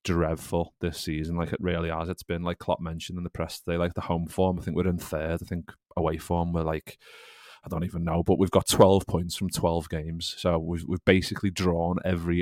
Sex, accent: male, British